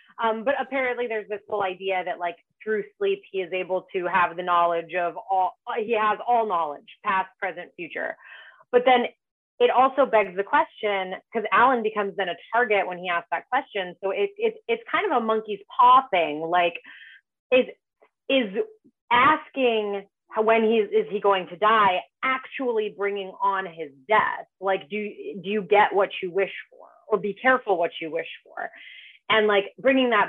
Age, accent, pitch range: 30-49, American, 180-230 Hz